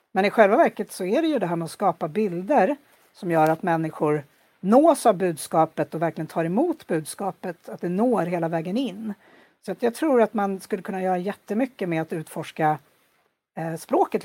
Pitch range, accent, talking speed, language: 165-210 Hz, Norwegian, 190 wpm, Swedish